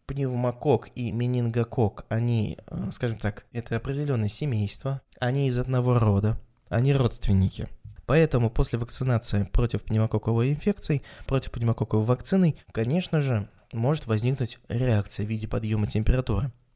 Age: 20-39